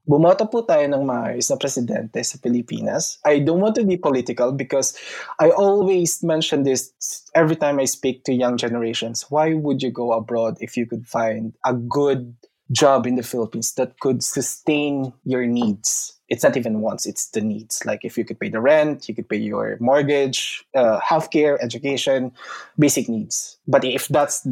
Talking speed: 160 wpm